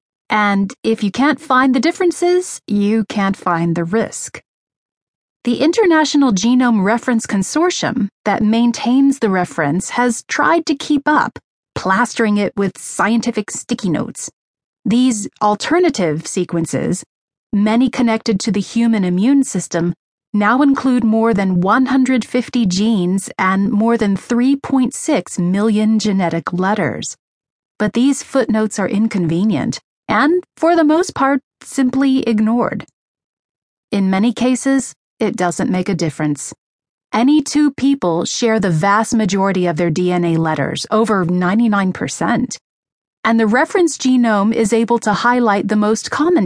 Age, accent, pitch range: 30-49, American, 190-250 Hz